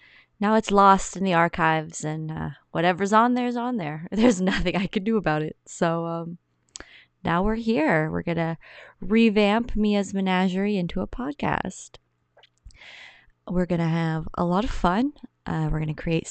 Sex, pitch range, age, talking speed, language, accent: female, 160-205 Hz, 20-39, 175 wpm, English, American